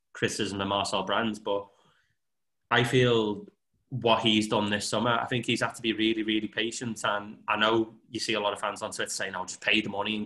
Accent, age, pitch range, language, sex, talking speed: British, 20-39, 105-120 Hz, English, male, 235 wpm